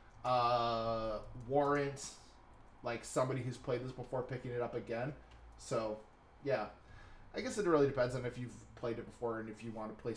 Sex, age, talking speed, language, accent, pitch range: male, 20-39, 185 wpm, English, American, 110-130 Hz